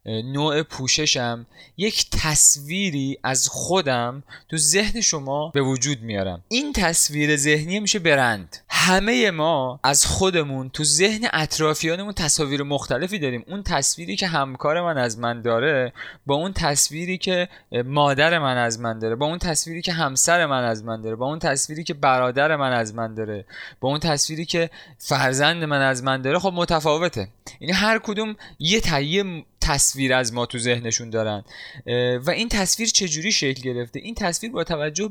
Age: 20-39